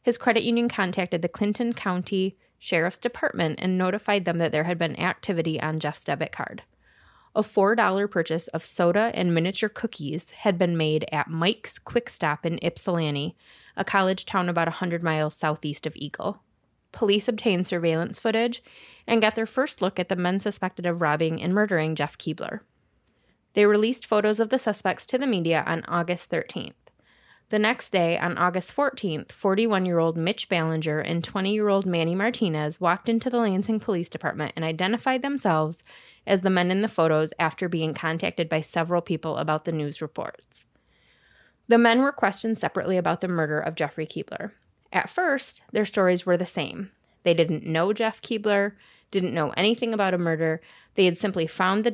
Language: English